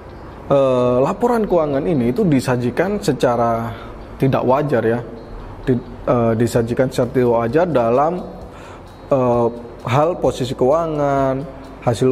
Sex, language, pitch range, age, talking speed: male, Indonesian, 120-160 Hz, 20-39, 110 wpm